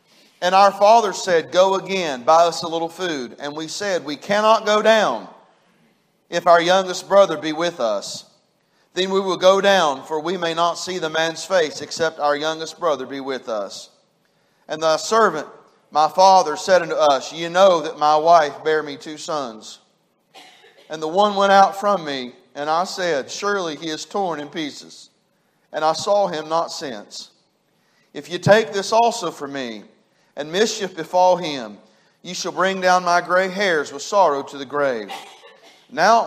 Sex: male